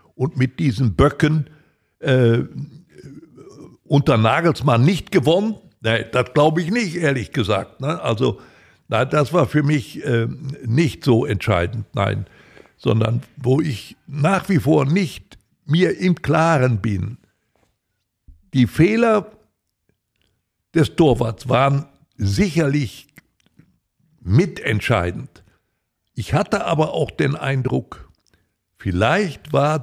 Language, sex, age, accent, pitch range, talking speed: German, male, 60-79, German, 115-170 Hz, 105 wpm